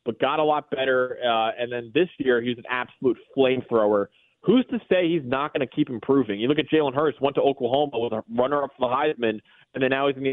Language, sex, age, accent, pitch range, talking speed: English, male, 20-39, American, 115-140 Hz, 250 wpm